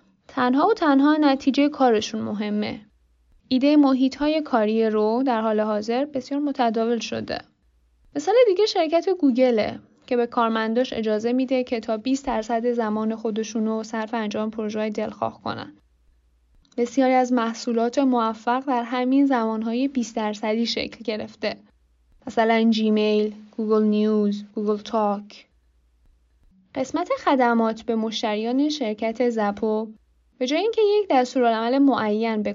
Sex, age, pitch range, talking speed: female, 10-29, 215-265 Hz, 120 wpm